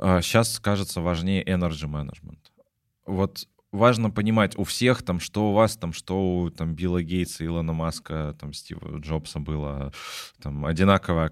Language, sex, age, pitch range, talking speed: Russian, male, 20-39, 80-100 Hz, 140 wpm